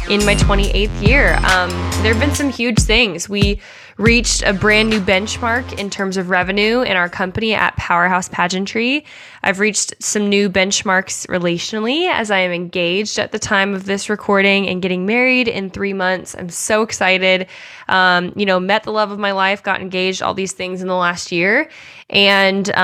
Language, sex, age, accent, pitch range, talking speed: English, female, 10-29, American, 185-220 Hz, 190 wpm